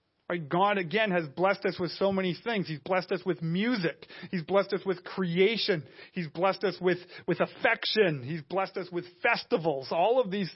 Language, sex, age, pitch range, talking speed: English, male, 40-59, 165-205 Hz, 190 wpm